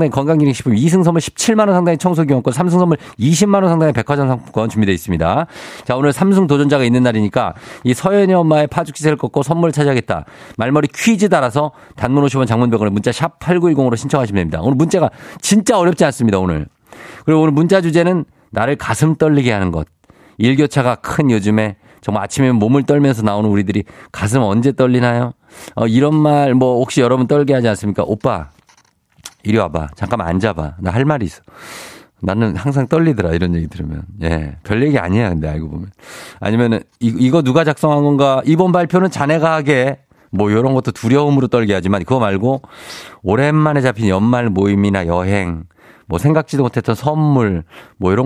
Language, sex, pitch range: Korean, male, 105-150 Hz